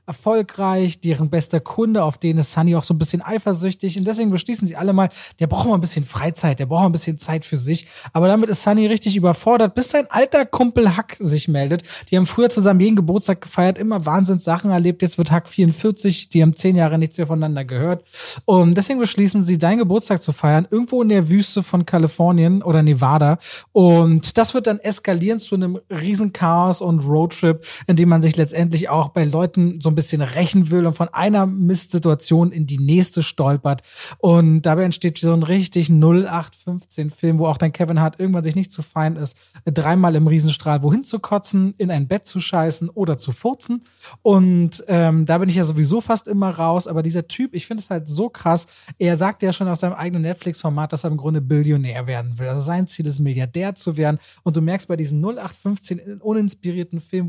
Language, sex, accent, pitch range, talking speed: German, male, German, 160-195 Hz, 205 wpm